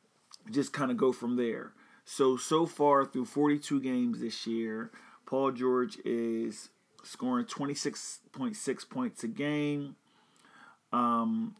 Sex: male